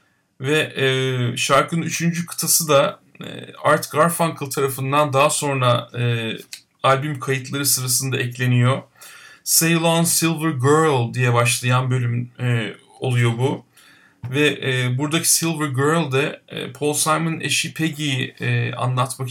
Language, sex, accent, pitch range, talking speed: Turkish, male, native, 125-145 Hz, 125 wpm